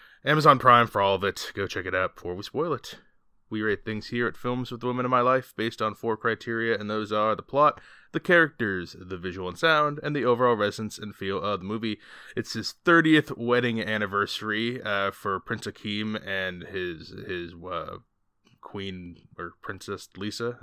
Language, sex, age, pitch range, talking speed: English, male, 20-39, 95-120 Hz, 195 wpm